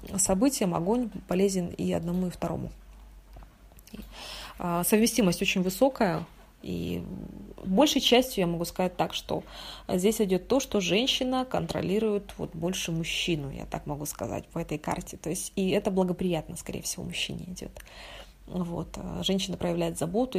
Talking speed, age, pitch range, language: 130 wpm, 20-39, 170-200 Hz, Russian